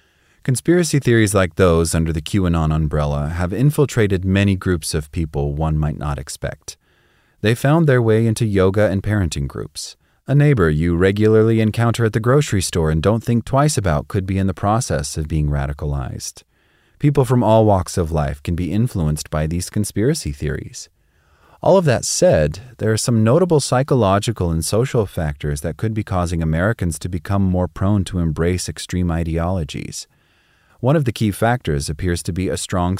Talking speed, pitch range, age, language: 175 wpm, 80-115 Hz, 30-49, English